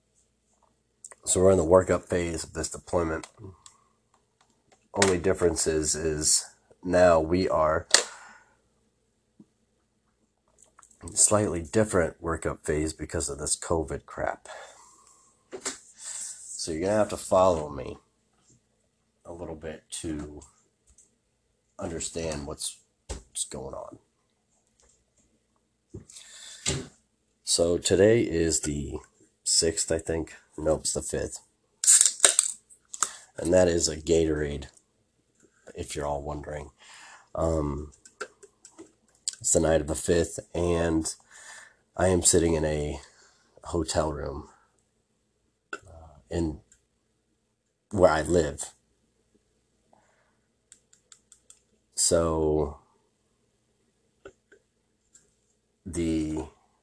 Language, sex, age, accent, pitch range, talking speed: English, male, 40-59, American, 75-90 Hz, 90 wpm